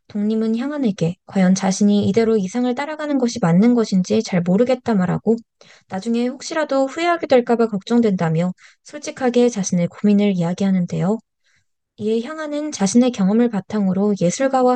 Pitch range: 190-250 Hz